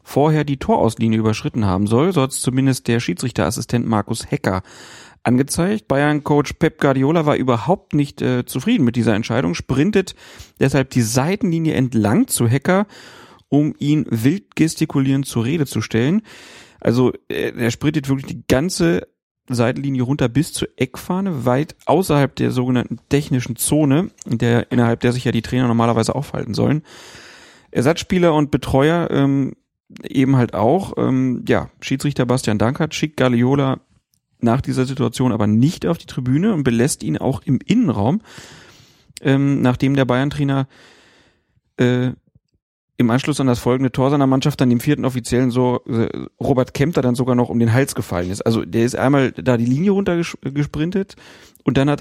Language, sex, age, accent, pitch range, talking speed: German, male, 40-59, German, 120-145 Hz, 155 wpm